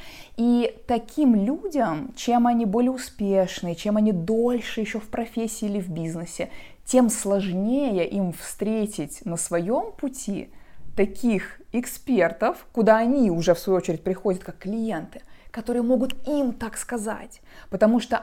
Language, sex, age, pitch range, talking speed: Russian, female, 20-39, 185-235 Hz, 135 wpm